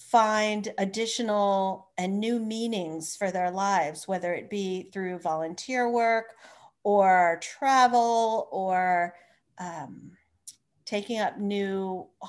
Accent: American